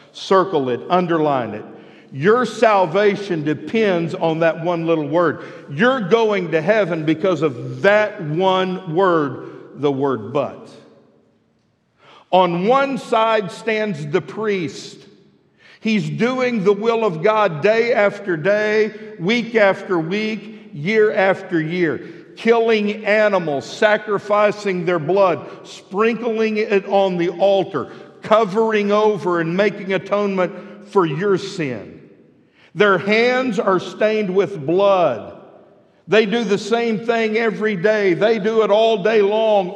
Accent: American